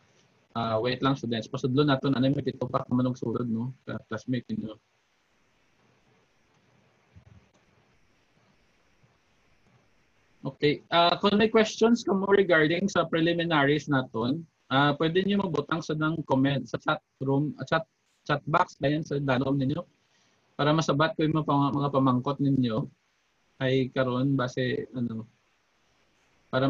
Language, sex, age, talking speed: English, male, 20-39, 130 wpm